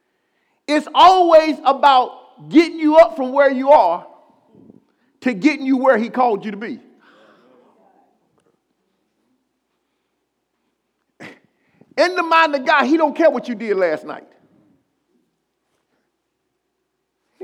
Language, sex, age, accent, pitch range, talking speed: English, male, 40-59, American, 255-320 Hz, 115 wpm